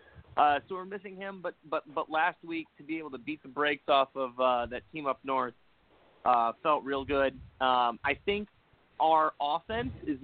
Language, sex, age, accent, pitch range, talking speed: English, male, 30-49, American, 135-175 Hz, 200 wpm